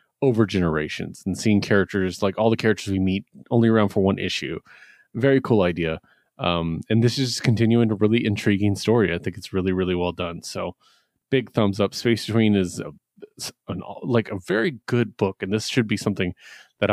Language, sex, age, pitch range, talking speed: English, male, 30-49, 95-115 Hz, 195 wpm